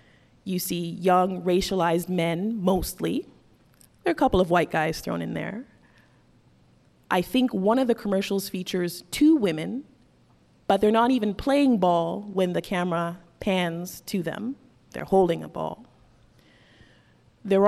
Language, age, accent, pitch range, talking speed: English, 20-39, American, 170-210 Hz, 145 wpm